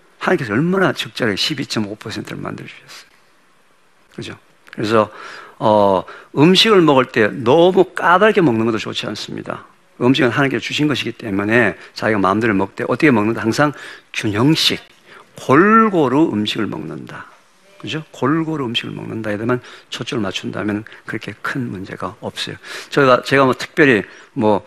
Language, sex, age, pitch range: Korean, male, 50-69, 105-145 Hz